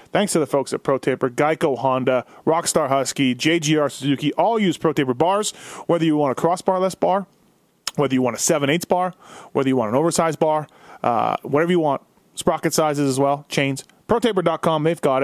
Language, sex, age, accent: English, male, 30-49, American